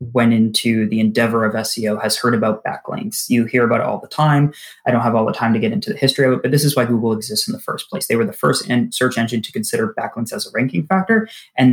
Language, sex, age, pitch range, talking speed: English, male, 20-39, 115-135 Hz, 275 wpm